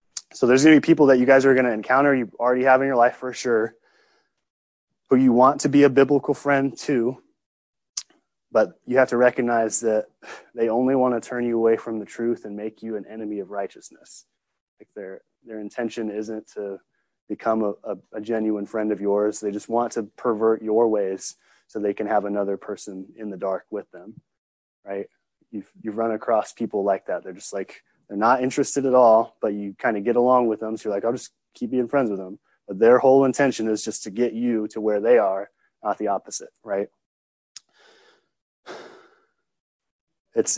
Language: English